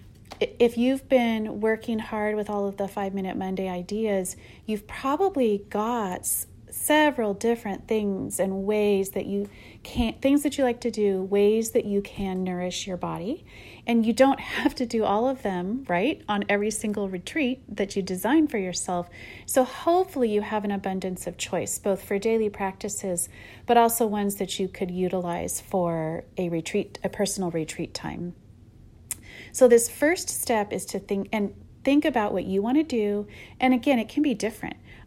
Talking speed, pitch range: 175 wpm, 185-230 Hz